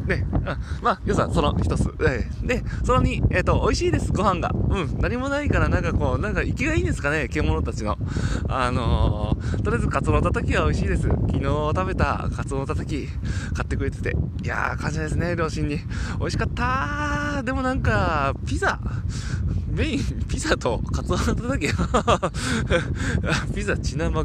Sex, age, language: male, 20-39, Japanese